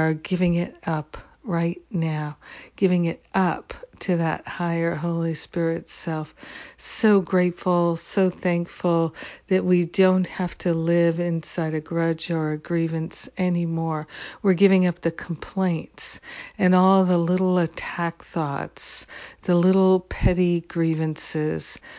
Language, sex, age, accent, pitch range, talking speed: English, female, 60-79, American, 165-180 Hz, 125 wpm